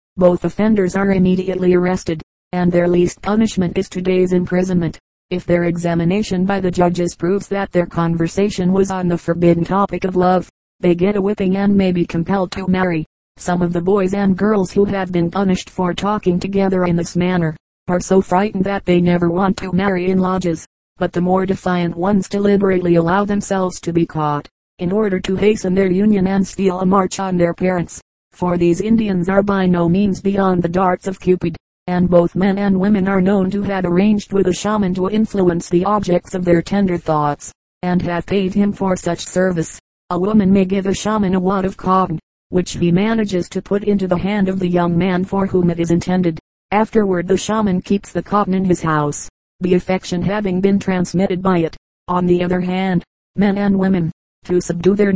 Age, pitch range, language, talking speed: 30-49, 175-195 Hz, English, 200 wpm